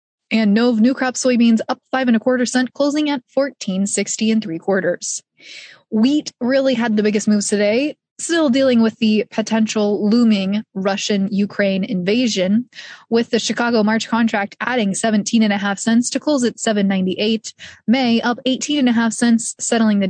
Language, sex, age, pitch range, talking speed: English, female, 20-39, 205-245 Hz, 170 wpm